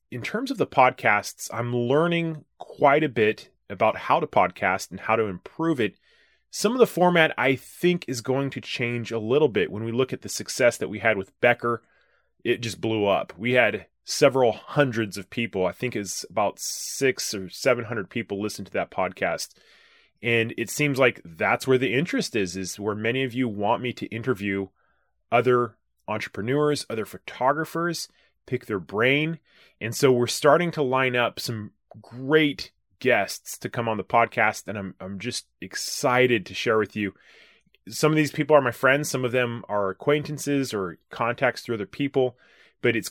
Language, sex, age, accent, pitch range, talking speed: English, male, 20-39, American, 105-135 Hz, 185 wpm